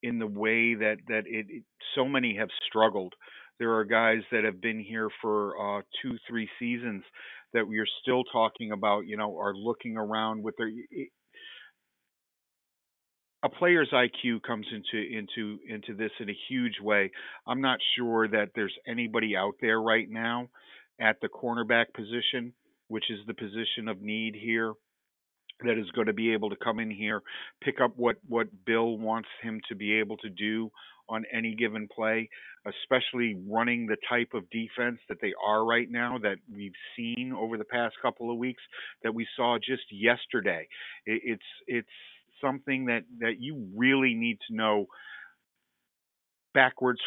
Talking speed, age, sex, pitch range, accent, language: 170 wpm, 50-69, male, 110-120 Hz, American, English